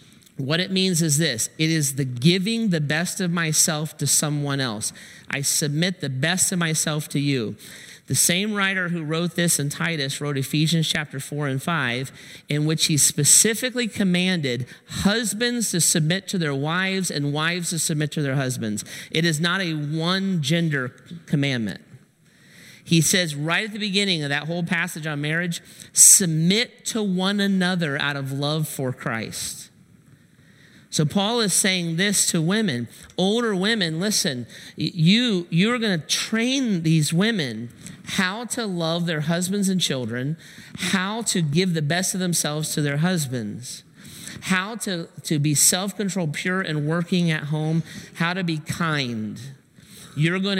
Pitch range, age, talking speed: 150-190 Hz, 40-59, 160 wpm